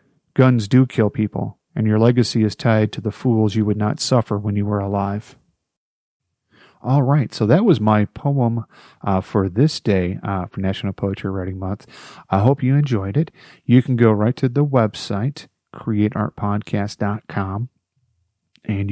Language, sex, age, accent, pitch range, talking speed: English, male, 40-59, American, 105-135 Hz, 160 wpm